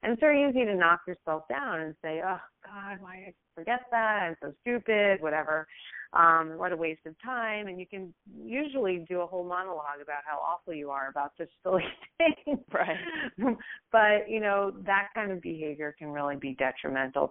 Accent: American